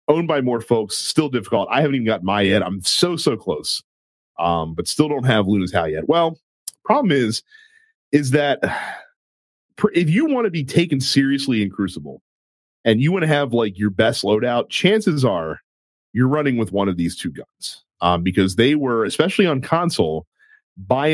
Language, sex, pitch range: English, male, 95-155 Hz